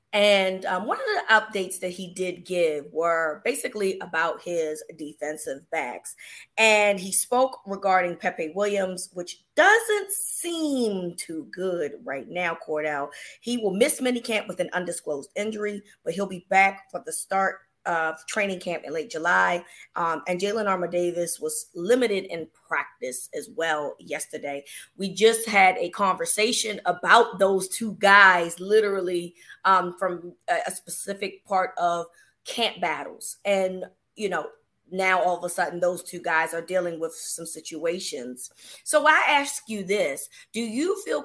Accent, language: American, English